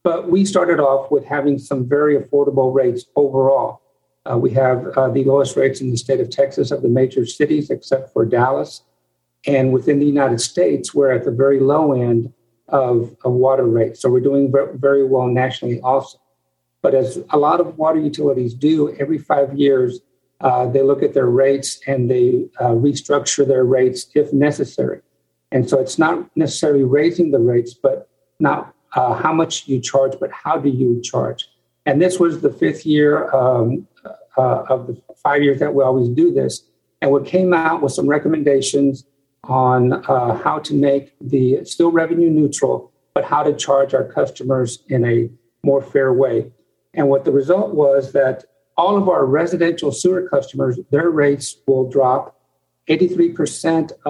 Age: 50-69